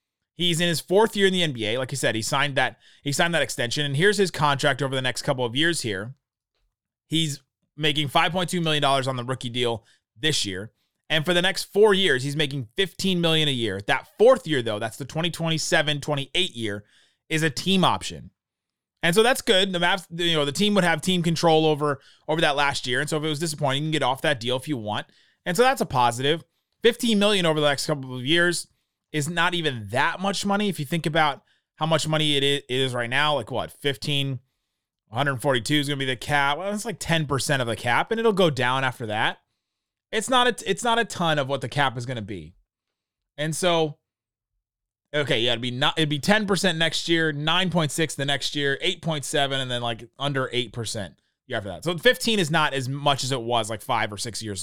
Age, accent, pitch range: 30-49, American, 125-170 Hz